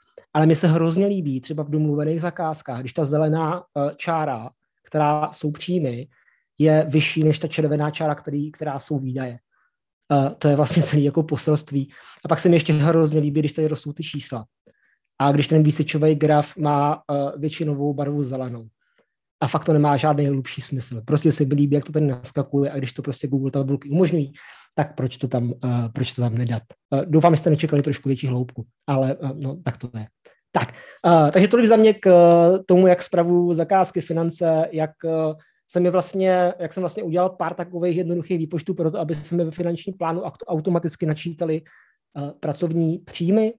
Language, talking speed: Czech, 185 wpm